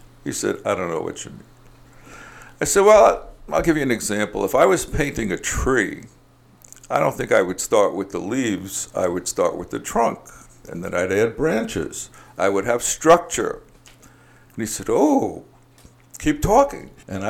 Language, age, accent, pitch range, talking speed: English, 60-79, American, 95-125 Hz, 185 wpm